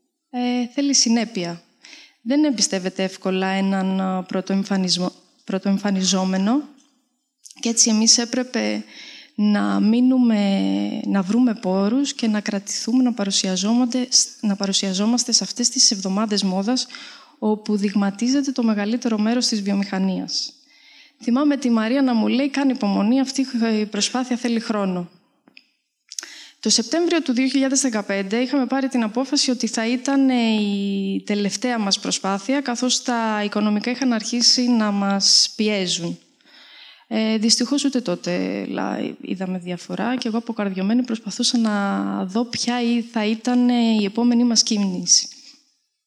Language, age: Greek, 20-39